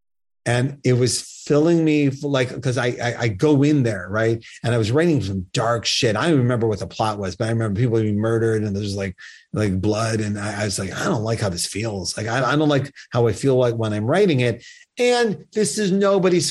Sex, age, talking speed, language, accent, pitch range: male, 40-59, 245 wpm, English, American, 115-160 Hz